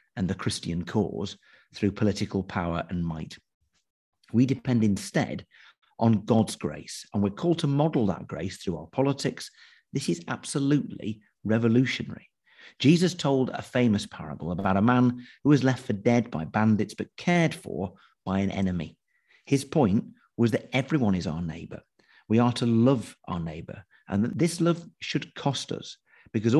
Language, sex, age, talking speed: English, male, 50-69, 160 wpm